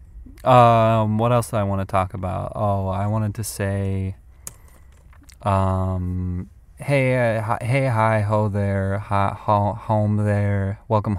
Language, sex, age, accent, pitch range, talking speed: English, male, 20-39, American, 95-120 Hz, 145 wpm